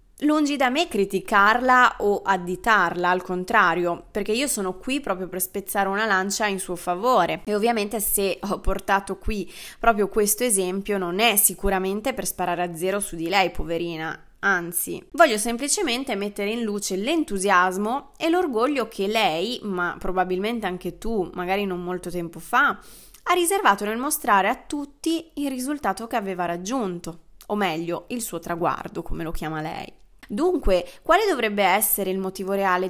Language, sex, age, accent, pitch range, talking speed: Italian, female, 20-39, native, 185-230 Hz, 160 wpm